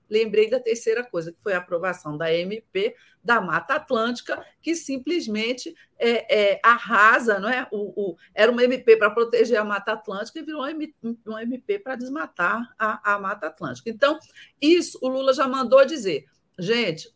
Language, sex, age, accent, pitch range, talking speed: Portuguese, female, 50-69, Brazilian, 195-260 Hz, 155 wpm